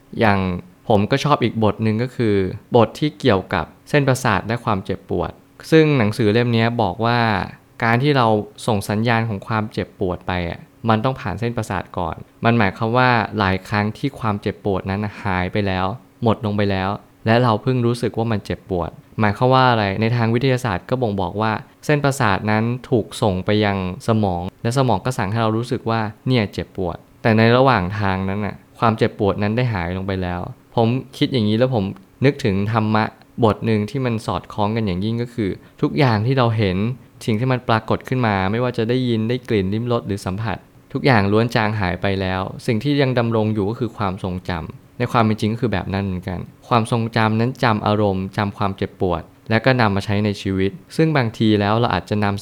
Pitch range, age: 100-120 Hz, 20-39